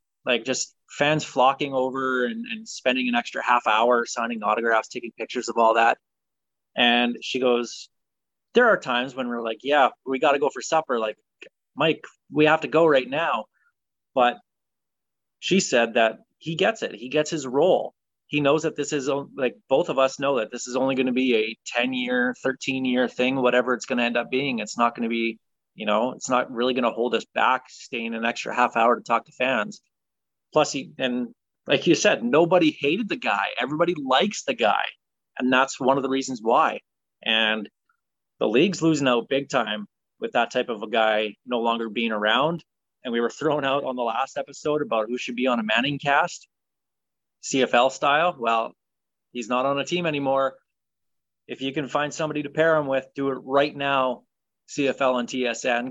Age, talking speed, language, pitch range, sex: 20-39, 200 wpm, English, 120-140 Hz, male